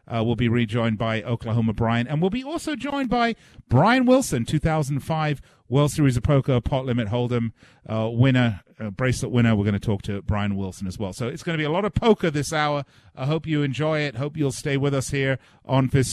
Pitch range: 110-145 Hz